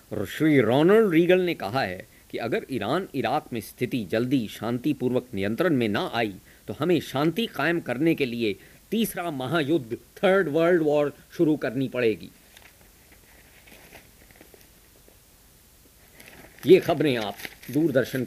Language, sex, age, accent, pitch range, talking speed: Hindi, male, 50-69, native, 120-165 Hz, 120 wpm